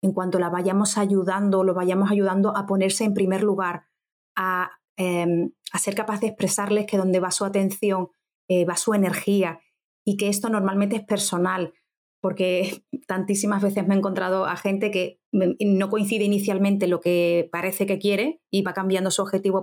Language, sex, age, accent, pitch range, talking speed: Spanish, female, 30-49, Spanish, 185-220 Hz, 175 wpm